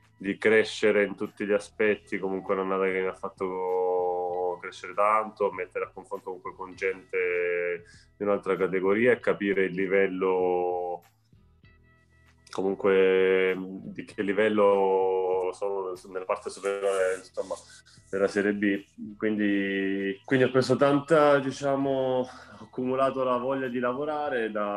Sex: male